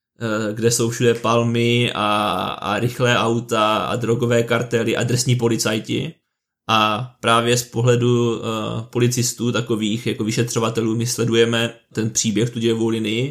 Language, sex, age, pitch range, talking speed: Czech, male, 20-39, 115-120 Hz, 130 wpm